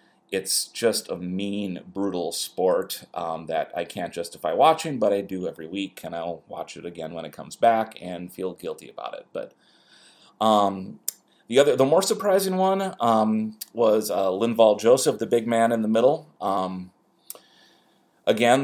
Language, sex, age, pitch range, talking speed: English, male, 30-49, 95-110 Hz, 165 wpm